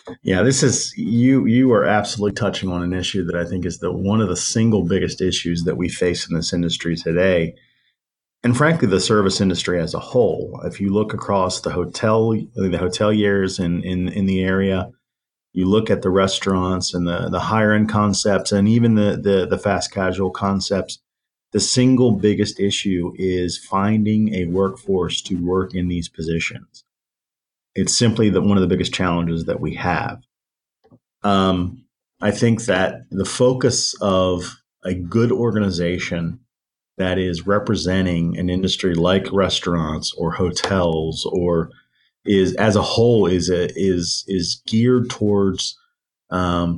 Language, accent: English, American